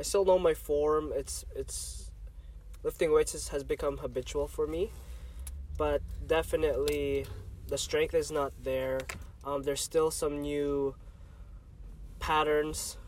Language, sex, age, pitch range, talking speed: English, male, 20-39, 130-150 Hz, 125 wpm